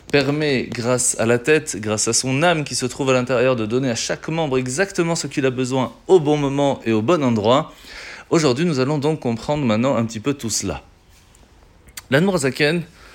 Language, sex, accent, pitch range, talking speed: French, male, French, 120-160 Hz, 200 wpm